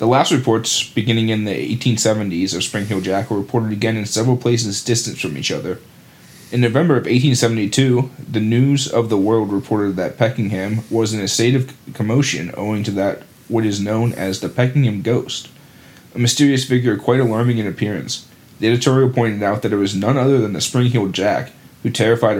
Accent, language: American, English